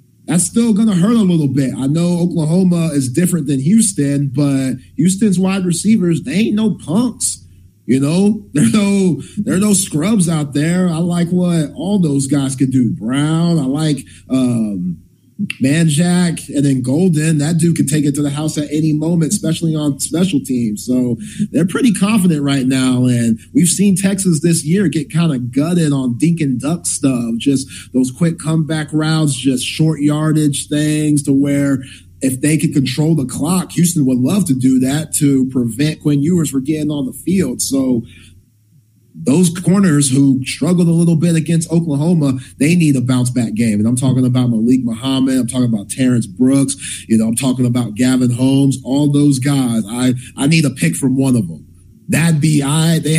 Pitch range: 130-165 Hz